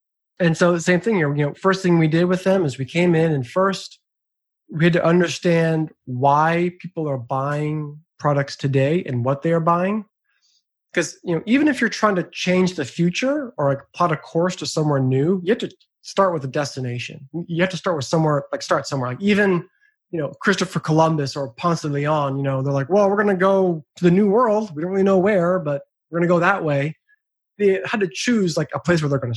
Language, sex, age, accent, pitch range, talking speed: English, male, 20-39, American, 145-185 Hz, 235 wpm